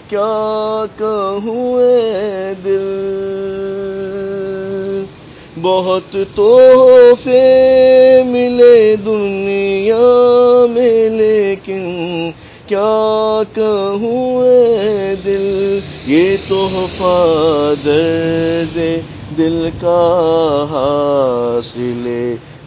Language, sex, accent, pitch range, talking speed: English, male, Indian, 165-220 Hz, 55 wpm